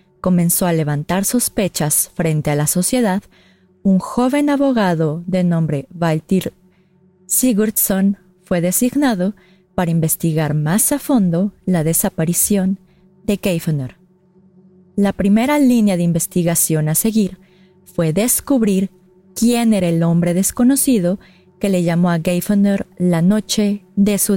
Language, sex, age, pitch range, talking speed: Spanish, female, 30-49, 175-210 Hz, 120 wpm